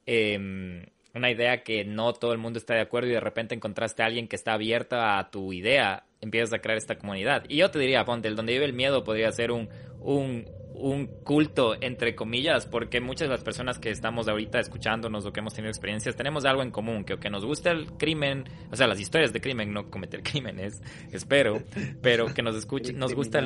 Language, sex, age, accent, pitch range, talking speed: Spanish, male, 20-39, Mexican, 105-130 Hz, 225 wpm